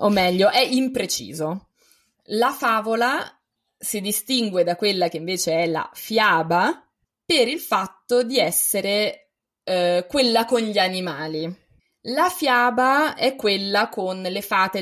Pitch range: 180-230 Hz